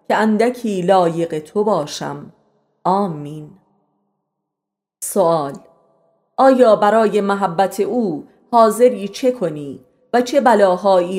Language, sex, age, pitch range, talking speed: Persian, female, 30-49, 170-210 Hz, 90 wpm